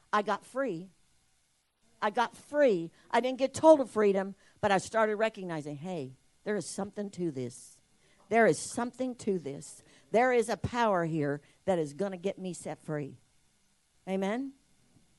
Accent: American